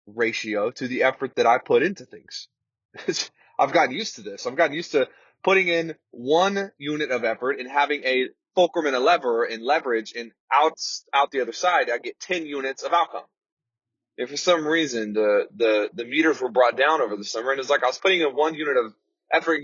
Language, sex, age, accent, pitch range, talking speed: English, male, 20-39, American, 125-180 Hz, 215 wpm